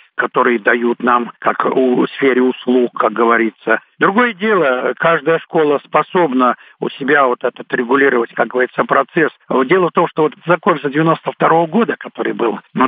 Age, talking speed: 60-79, 165 wpm